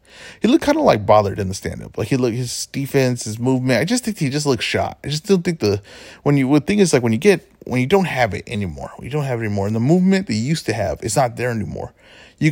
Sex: male